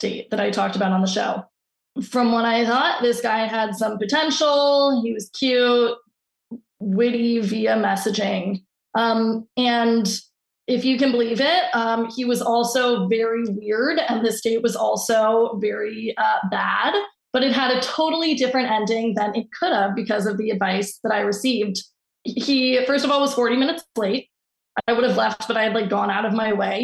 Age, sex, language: 20-39, female, English